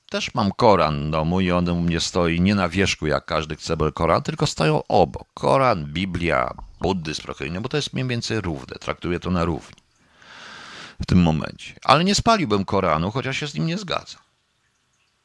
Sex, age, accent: male, 50-69, native